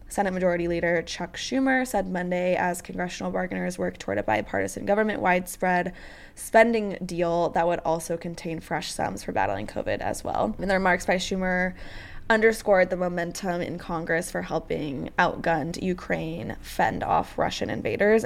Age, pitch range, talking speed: 10-29, 165-200 Hz, 155 wpm